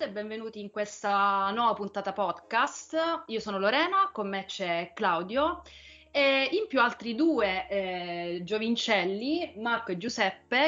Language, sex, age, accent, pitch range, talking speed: Italian, female, 30-49, native, 195-250 Hz, 135 wpm